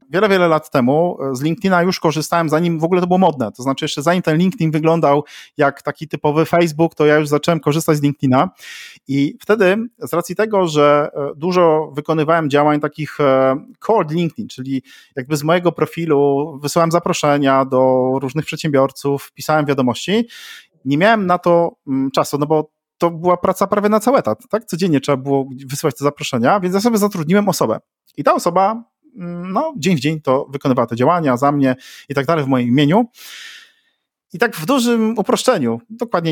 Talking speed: 175 wpm